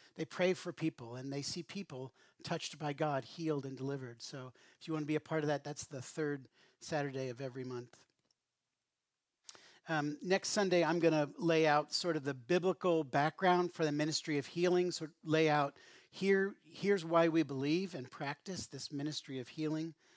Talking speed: 190 wpm